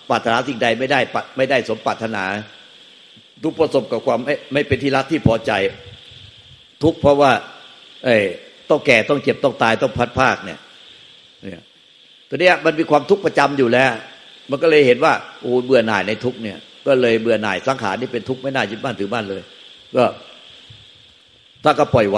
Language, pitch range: Thai, 115-145 Hz